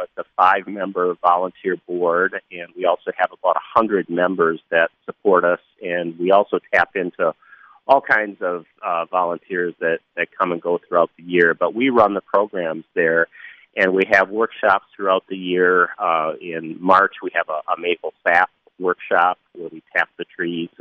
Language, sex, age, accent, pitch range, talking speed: English, male, 40-59, American, 80-90 Hz, 175 wpm